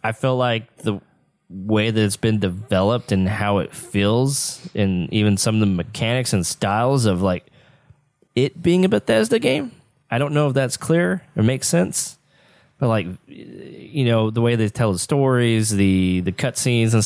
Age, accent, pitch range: 20-39, American, 105-130 Hz